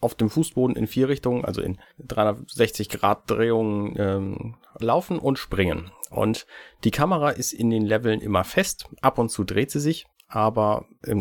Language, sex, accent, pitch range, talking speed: German, male, German, 105-130 Hz, 155 wpm